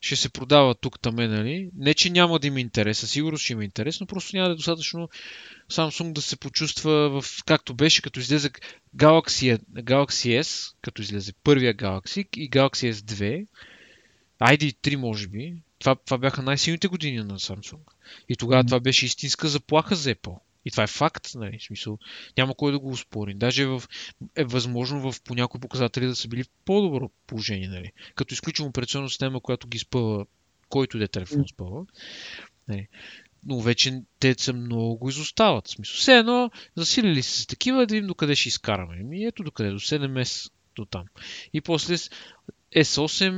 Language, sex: Bulgarian, male